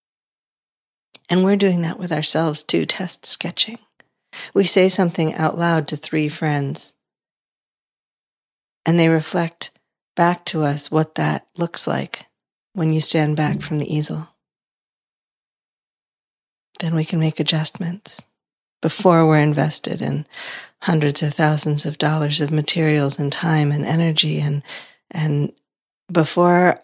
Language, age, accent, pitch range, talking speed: English, 40-59, American, 150-185 Hz, 125 wpm